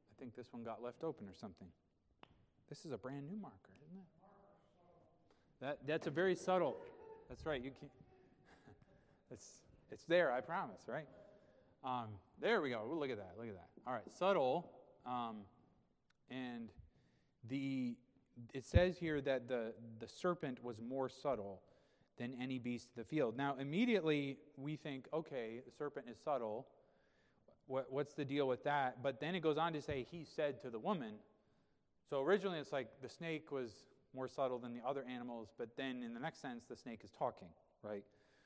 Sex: male